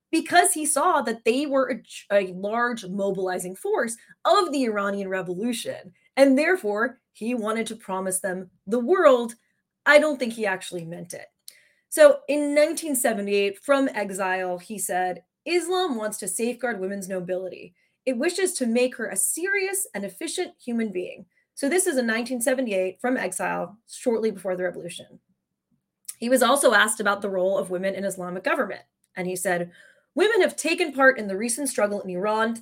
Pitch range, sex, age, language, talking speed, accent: 195-280 Hz, female, 20-39, English, 165 wpm, American